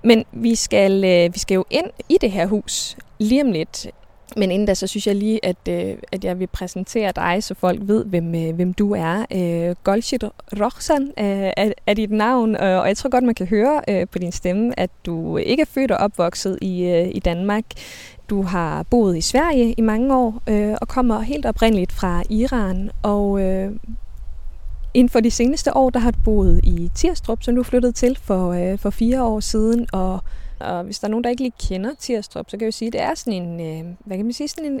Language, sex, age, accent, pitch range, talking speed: Danish, female, 20-39, native, 190-235 Hz, 230 wpm